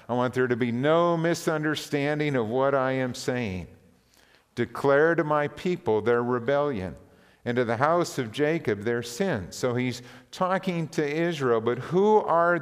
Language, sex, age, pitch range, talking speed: English, male, 50-69, 120-160 Hz, 160 wpm